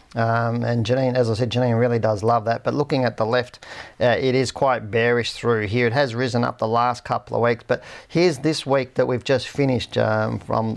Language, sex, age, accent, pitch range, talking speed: English, male, 40-59, Australian, 110-130 Hz, 235 wpm